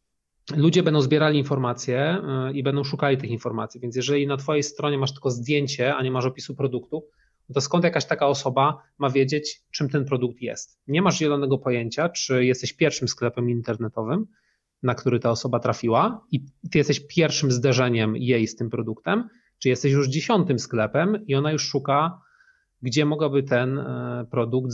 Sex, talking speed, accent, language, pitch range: male, 165 wpm, native, Polish, 125-150 Hz